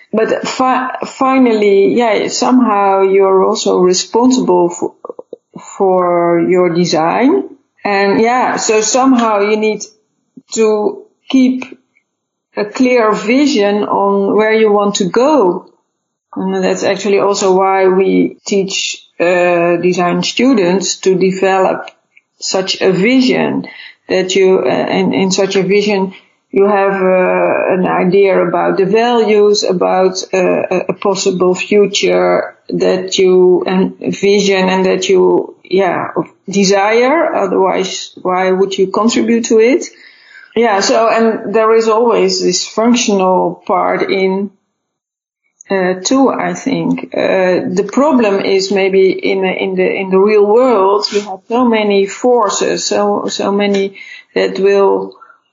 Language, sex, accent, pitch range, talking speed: English, female, Dutch, 190-225 Hz, 125 wpm